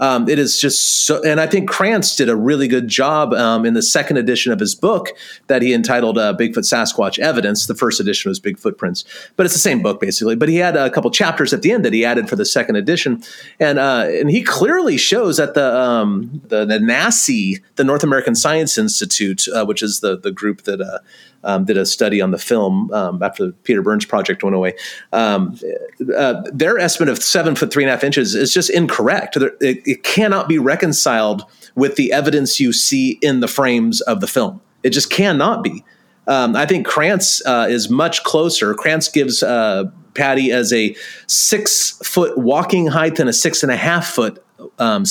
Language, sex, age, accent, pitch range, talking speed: English, male, 30-49, American, 125-200 Hz, 205 wpm